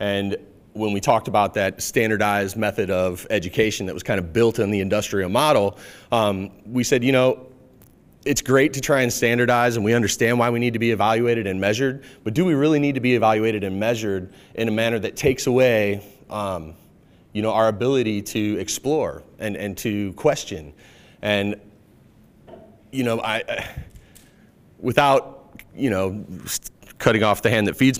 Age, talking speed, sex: 30-49, 175 wpm, male